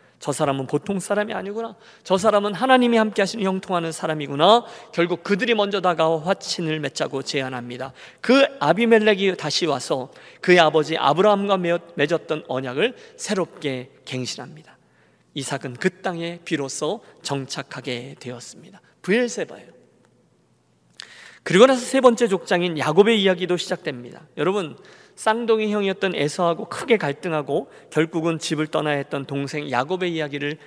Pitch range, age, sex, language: 145-200 Hz, 40-59, male, Korean